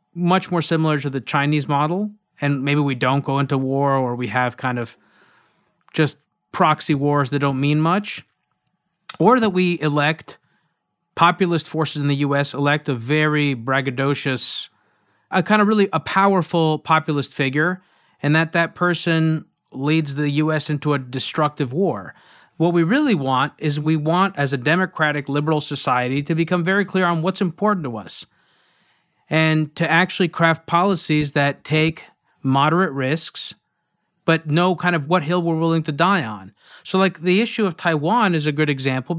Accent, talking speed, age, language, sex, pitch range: American, 165 wpm, 30-49, English, male, 140-175 Hz